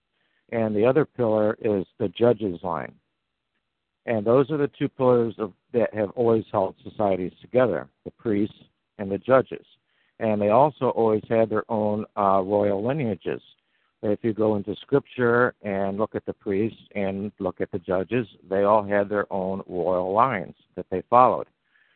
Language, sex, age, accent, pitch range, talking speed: English, male, 60-79, American, 100-120 Hz, 165 wpm